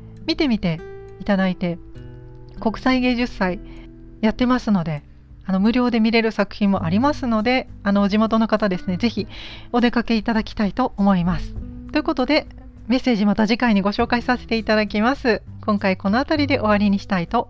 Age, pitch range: 40-59, 190-255 Hz